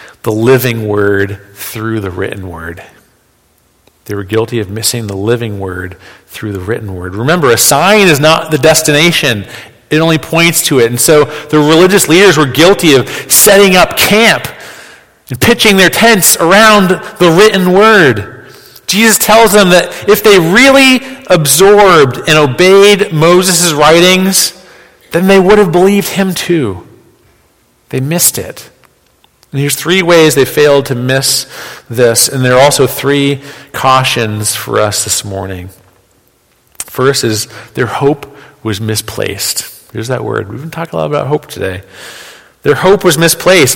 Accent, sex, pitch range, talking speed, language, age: American, male, 115-185 Hz, 155 wpm, English, 40-59